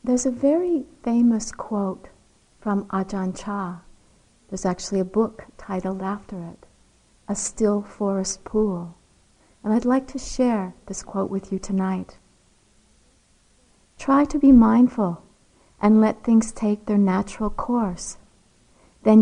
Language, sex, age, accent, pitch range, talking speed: English, female, 60-79, American, 195-240 Hz, 130 wpm